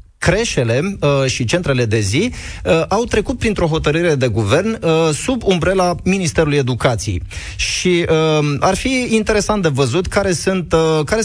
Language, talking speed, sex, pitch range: Romanian, 155 wpm, male, 130-165 Hz